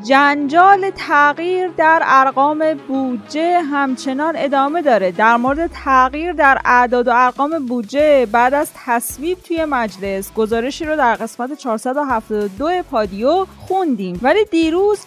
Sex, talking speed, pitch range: female, 120 wpm, 235-325 Hz